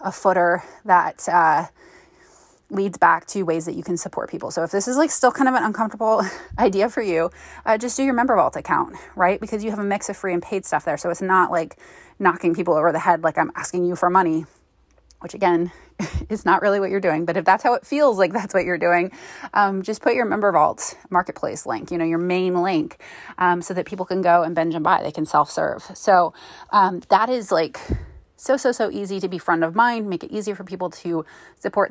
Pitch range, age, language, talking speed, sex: 170-205 Hz, 20-39, English, 235 wpm, female